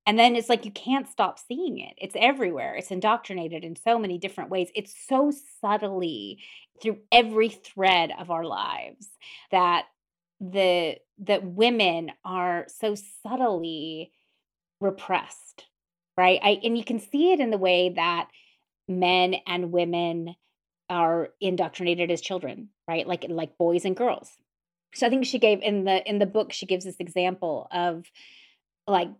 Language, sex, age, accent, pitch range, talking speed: English, female, 30-49, American, 170-205 Hz, 155 wpm